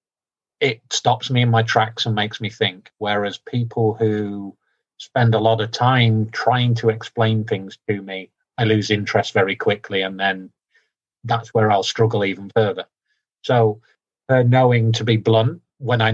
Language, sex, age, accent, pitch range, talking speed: English, male, 40-59, British, 110-120 Hz, 165 wpm